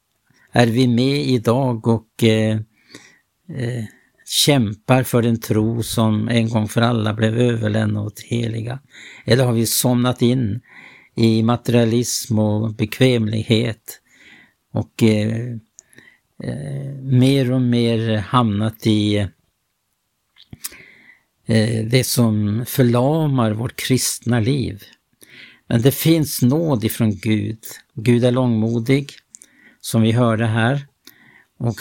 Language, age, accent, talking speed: Swedish, 60-79, Norwegian, 110 wpm